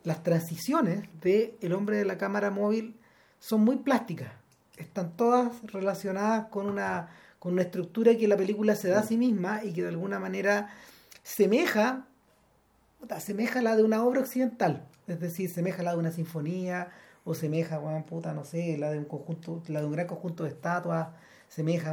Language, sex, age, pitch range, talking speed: Spanish, male, 40-59, 165-230 Hz, 180 wpm